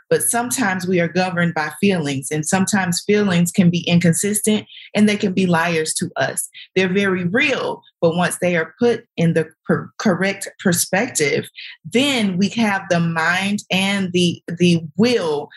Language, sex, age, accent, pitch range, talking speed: English, female, 30-49, American, 165-195 Hz, 160 wpm